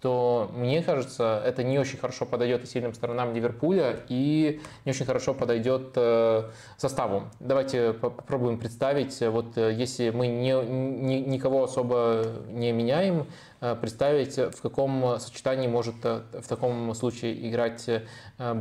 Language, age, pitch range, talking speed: Russian, 20-39, 115-130 Hz, 125 wpm